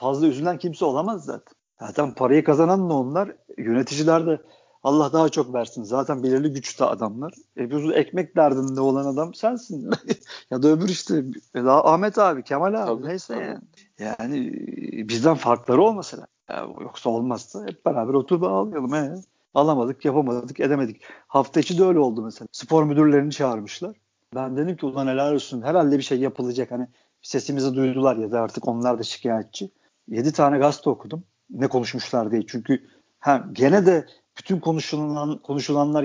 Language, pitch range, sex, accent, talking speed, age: Turkish, 130-170 Hz, male, native, 155 wpm, 50-69